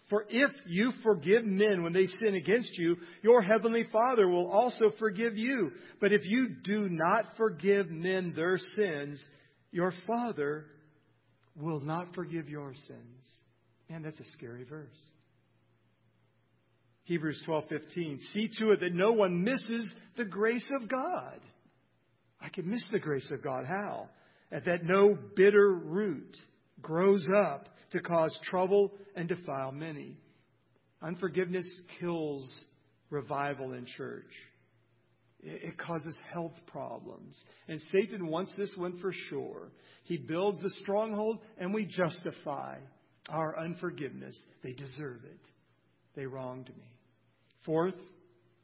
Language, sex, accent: English, male, American